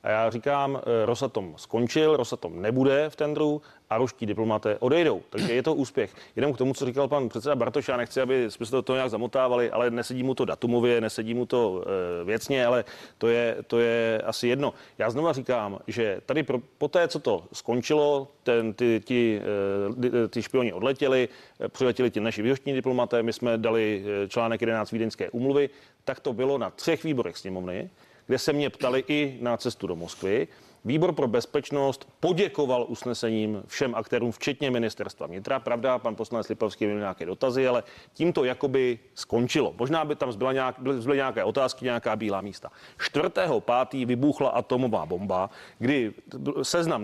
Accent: native